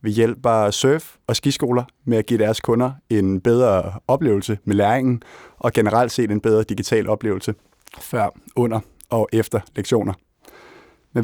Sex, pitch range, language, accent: male, 105-120 Hz, Danish, native